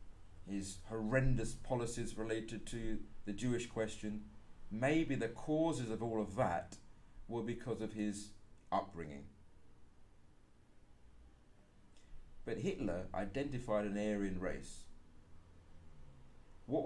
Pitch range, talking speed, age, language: 90-115 Hz, 95 wpm, 30-49, English